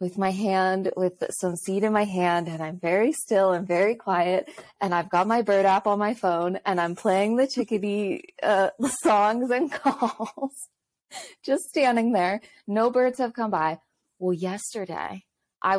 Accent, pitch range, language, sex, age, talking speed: American, 170-235 Hz, English, female, 20-39, 170 wpm